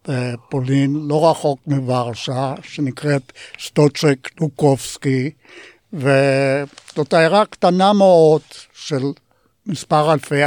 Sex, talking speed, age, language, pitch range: male, 80 wpm, 60-79, Hebrew, 135-155 Hz